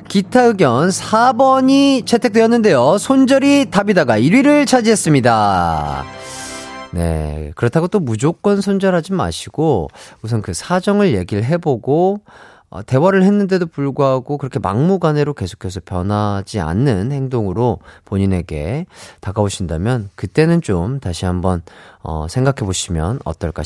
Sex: male